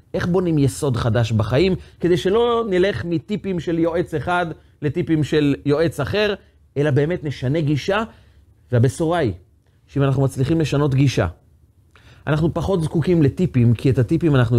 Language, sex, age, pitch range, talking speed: Hebrew, male, 30-49, 105-180 Hz, 145 wpm